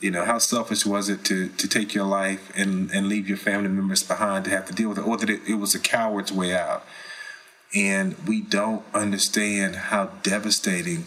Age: 30-49